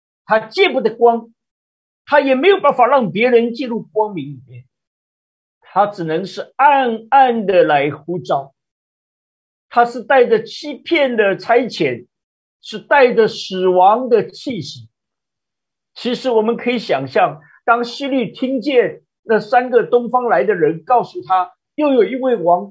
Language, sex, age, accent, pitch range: Chinese, male, 50-69, native, 200-275 Hz